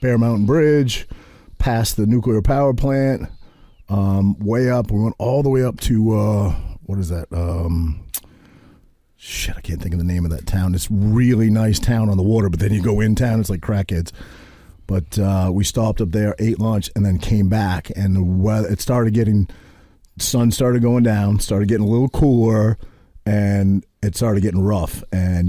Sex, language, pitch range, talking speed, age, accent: male, English, 95-110 Hz, 195 wpm, 40-59, American